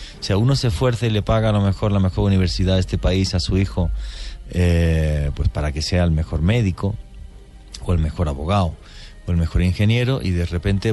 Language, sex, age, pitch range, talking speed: English, male, 30-49, 80-100 Hz, 220 wpm